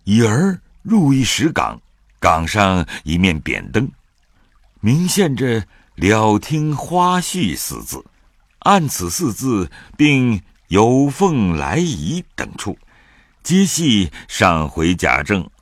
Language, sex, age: Chinese, male, 60-79